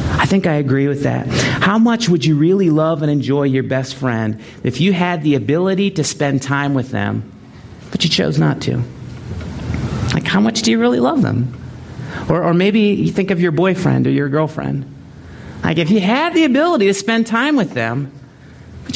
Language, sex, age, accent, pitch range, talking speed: English, male, 40-59, American, 135-200 Hz, 200 wpm